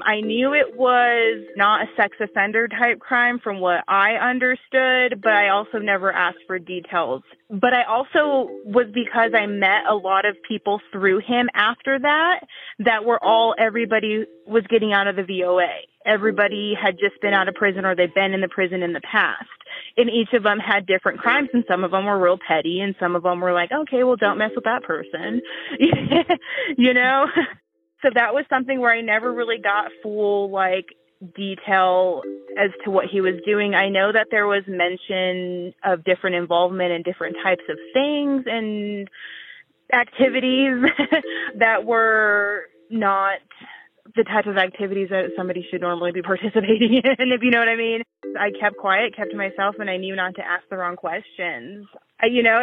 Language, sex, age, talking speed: English, female, 30-49, 185 wpm